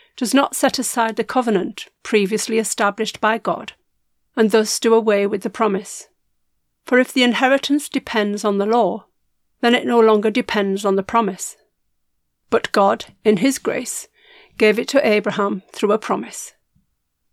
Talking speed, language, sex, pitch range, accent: 155 wpm, English, female, 210-250 Hz, British